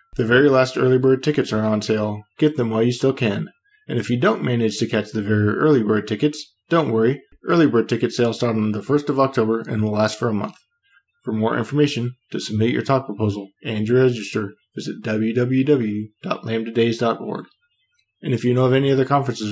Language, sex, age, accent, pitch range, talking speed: English, male, 20-39, American, 110-140 Hz, 205 wpm